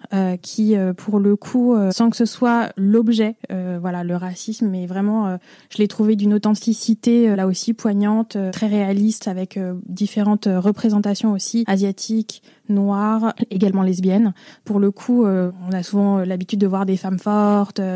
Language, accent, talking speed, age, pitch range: French, French, 180 wpm, 20-39, 195-230 Hz